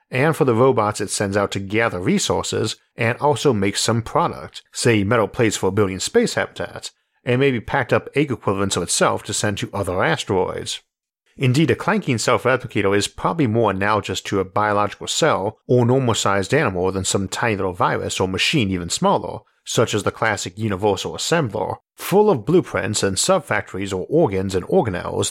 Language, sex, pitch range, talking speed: English, male, 100-135 Hz, 175 wpm